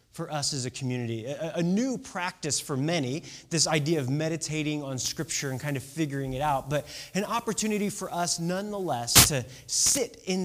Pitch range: 130-175 Hz